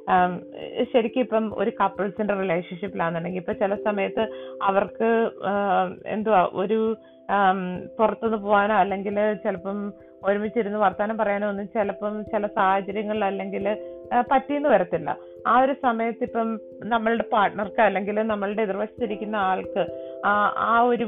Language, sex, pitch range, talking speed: Malayalam, female, 185-235 Hz, 105 wpm